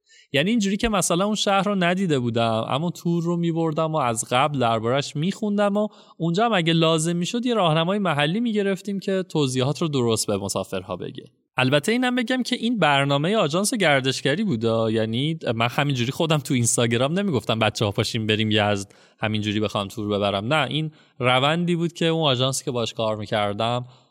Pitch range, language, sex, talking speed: 120-175 Hz, Persian, male, 185 wpm